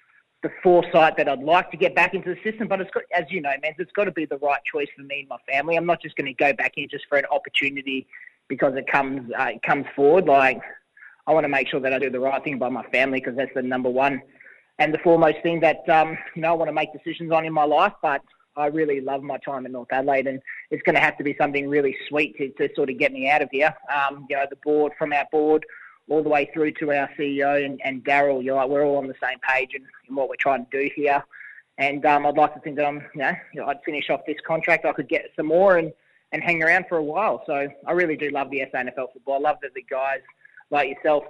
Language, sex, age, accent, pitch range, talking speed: English, male, 20-39, Australian, 140-155 Hz, 280 wpm